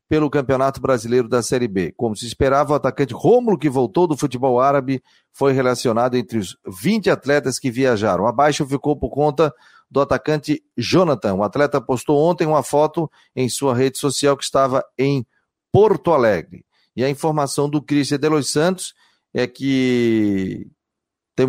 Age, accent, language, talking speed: 40-59, Brazilian, Portuguese, 160 wpm